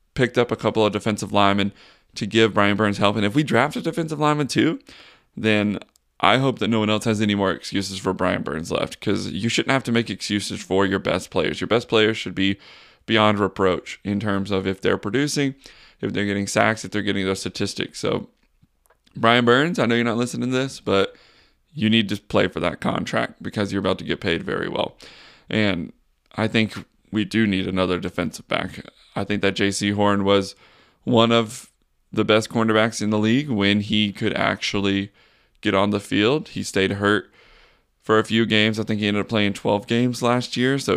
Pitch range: 100-110 Hz